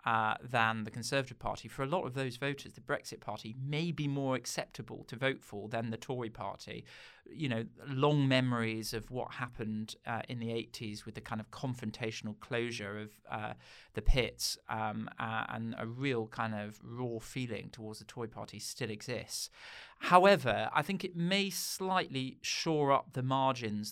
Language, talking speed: English, 180 wpm